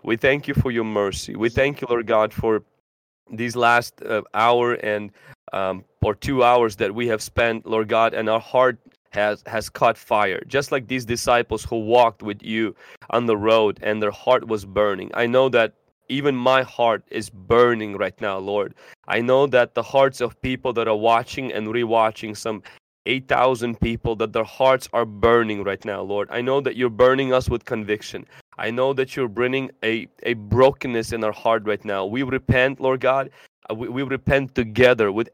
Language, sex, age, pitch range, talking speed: English, male, 30-49, 110-130 Hz, 195 wpm